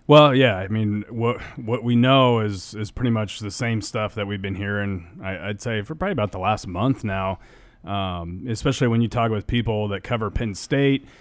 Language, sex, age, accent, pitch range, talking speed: English, male, 30-49, American, 100-120 Hz, 215 wpm